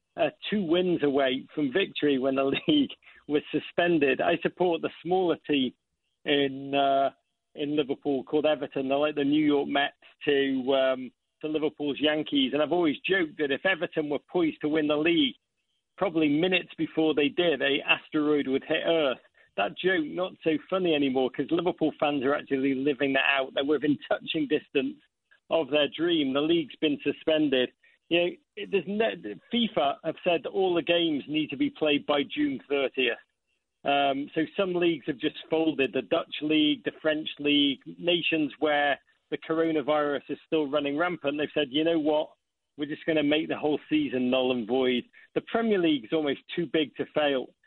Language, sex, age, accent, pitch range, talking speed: English, male, 50-69, British, 140-170 Hz, 185 wpm